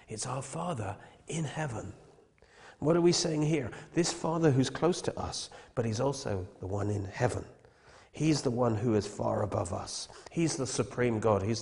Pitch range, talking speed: 105-135 Hz, 185 wpm